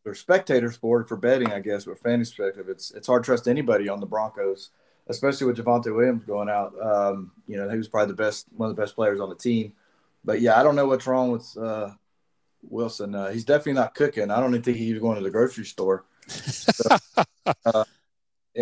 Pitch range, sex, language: 110-125 Hz, male, English